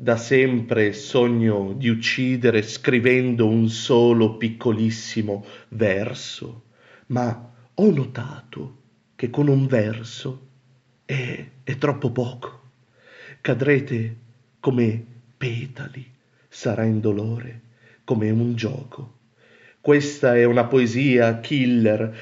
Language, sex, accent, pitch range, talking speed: Italian, male, native, 115-135 Hz, 95 wpm